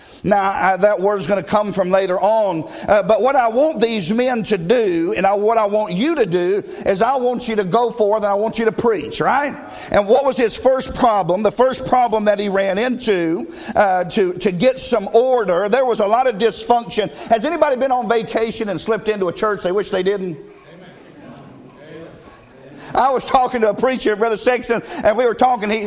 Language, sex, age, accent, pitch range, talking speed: English, male, 50-69, American, 210-245 Hz, 220 wpm